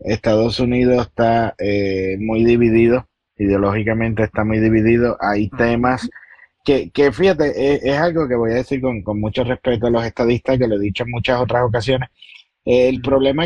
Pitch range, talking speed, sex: 105-125 Hz, 175 wpm, male